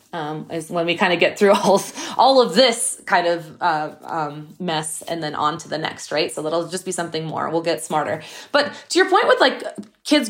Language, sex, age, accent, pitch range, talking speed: English, female, 20-39, American, 185-255 Hz, 235 wpm